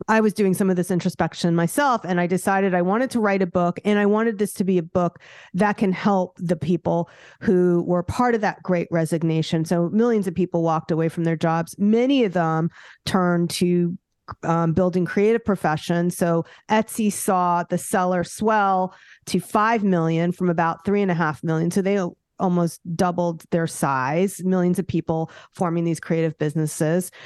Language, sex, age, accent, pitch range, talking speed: English, female, 40-59, American, 170-215 Hz, 185 wpm